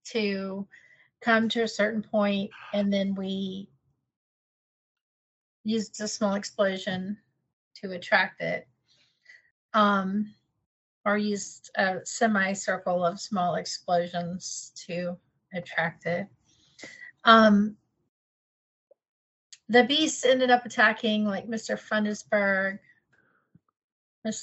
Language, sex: English, female